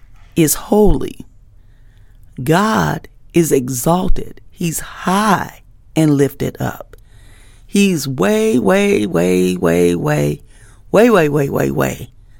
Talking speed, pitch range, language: 100 wpm, 105-170 Hz, English